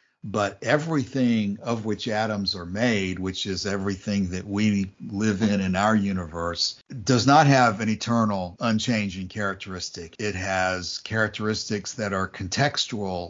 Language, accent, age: English, American, 60-79